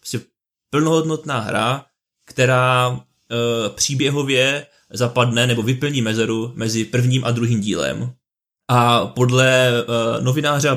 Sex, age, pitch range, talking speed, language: male, 20-39, 115-125 Hz, 110 wpm, Czech